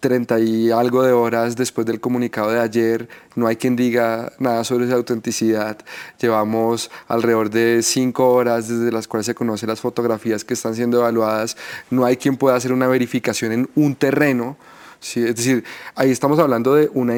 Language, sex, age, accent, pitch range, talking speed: Spanish, male, 30-49, Colombian, 120-145 Hz, 180 wpm